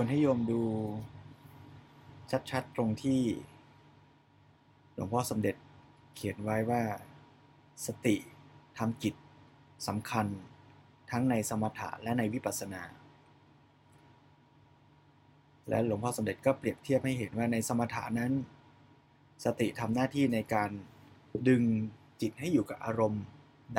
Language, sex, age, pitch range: Thai, male, 20-39, 115-140 Hz